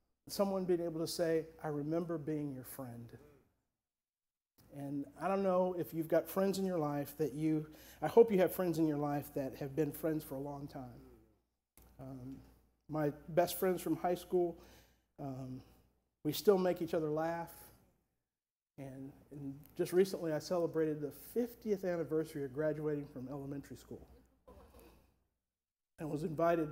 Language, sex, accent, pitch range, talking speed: English, male, American, 140-170 Hz, 155 wpm